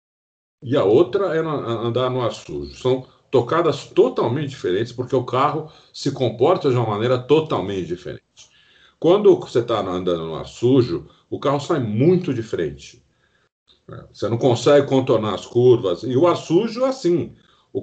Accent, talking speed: Brazilian, 160 wpm